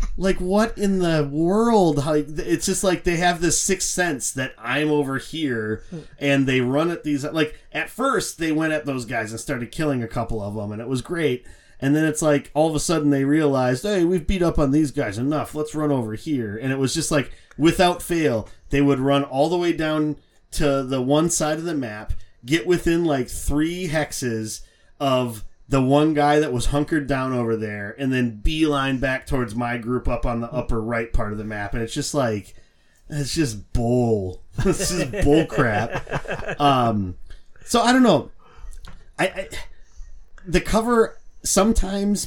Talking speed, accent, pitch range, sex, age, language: 195 wpm, American, 120-160 Hz, male, 30-49, English